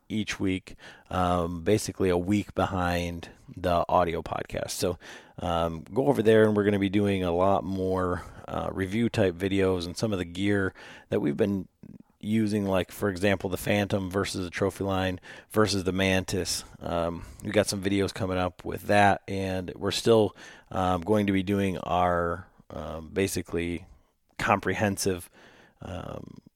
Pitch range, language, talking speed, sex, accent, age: 90-100 Hz, English, 160 wpm, male, American, 40-59